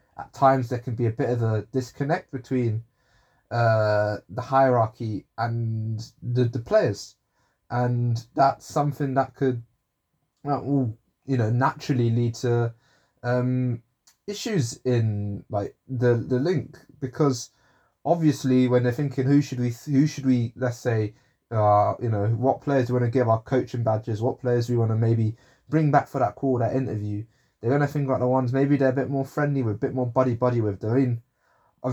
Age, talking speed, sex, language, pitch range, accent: 20-39, 180 wpm, male, English, 115-135 Hz, British